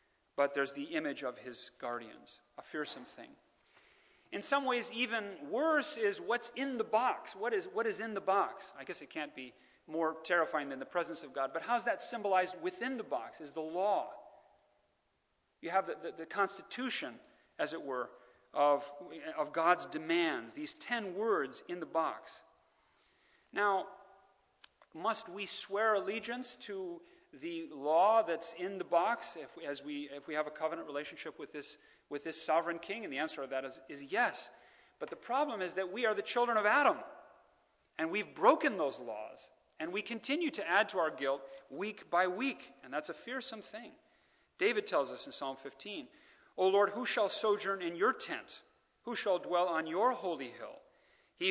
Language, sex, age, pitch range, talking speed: English, male, 40-59, 160-240 Hz, 185 wpm